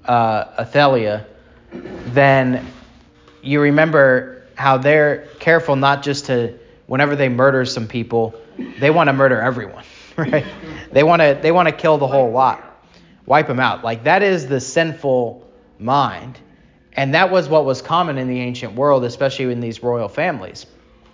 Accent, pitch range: American, 120-140 Hz